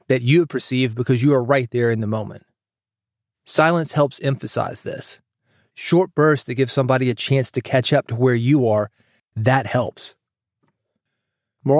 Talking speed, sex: 165 wpm, male